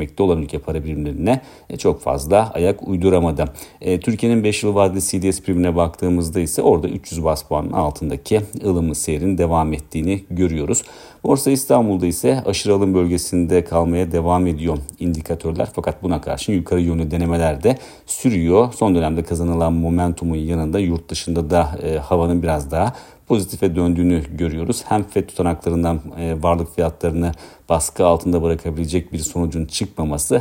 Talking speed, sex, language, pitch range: 140 wpm, male, Turkish, 80-90 Hz